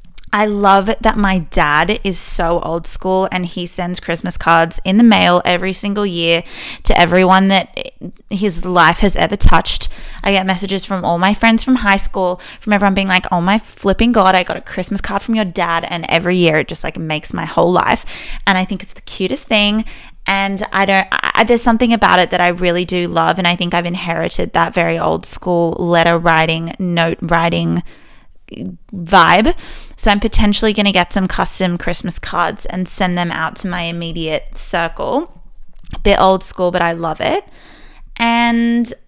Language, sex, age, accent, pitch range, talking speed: English, female, 20-39, Australian, 175-210 Hz, 195 wpm